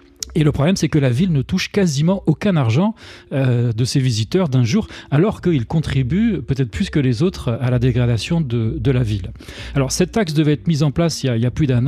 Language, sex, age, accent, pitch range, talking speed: French, male, 40-59, French, 120-160 Hz, 235 wpm